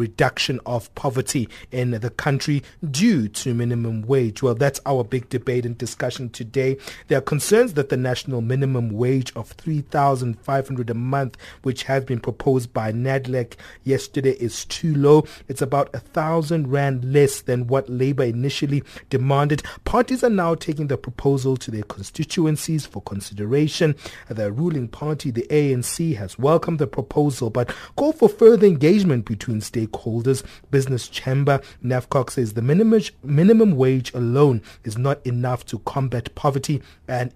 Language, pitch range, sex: English, 120-145 Hz, male